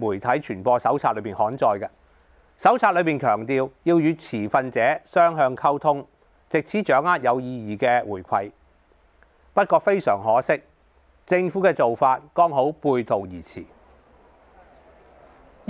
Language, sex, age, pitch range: Chinese, male, 30-49, 120-180 Hz